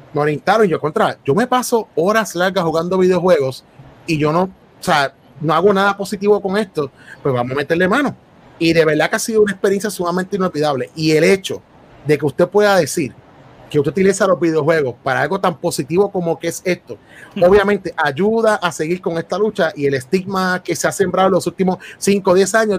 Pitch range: 150-200 Hz